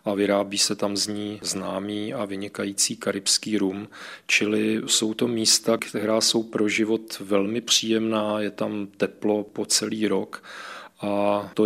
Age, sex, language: 40-59, male, Czech